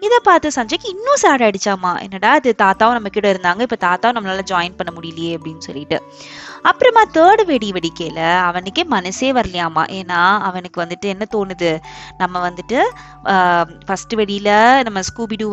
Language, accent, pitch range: Tamil, native, 190-260 Hz